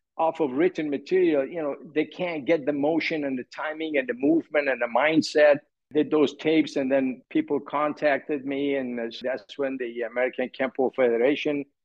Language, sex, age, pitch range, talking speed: English, male, 60-79, 125-155 Hz, 175 wpm